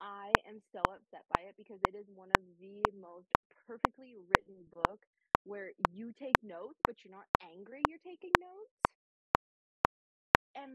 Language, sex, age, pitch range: English, female, 20-39, 185-230 Hz